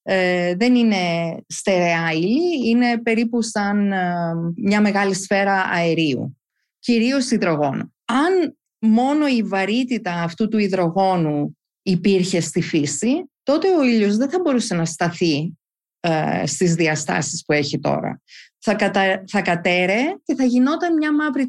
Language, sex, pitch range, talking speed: Greek, female, 185-260 Hz, 130 wpm